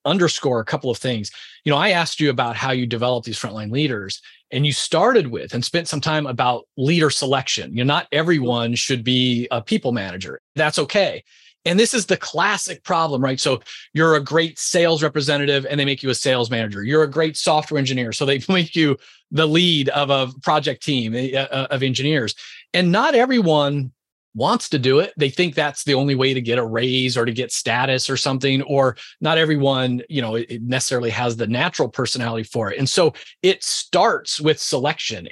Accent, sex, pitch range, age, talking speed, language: American, male, 125-160 Hz, 30-49, 200 wpm, English